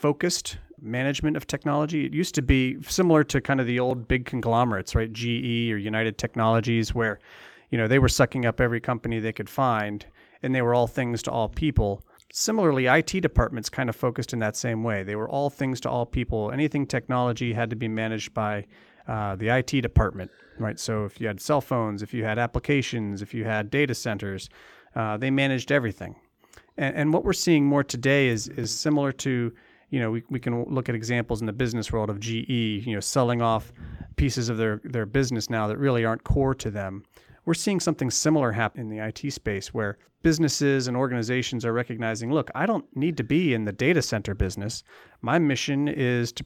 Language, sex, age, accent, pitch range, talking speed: English, male, 30-49, American, 110-140 Hz, 205 wpm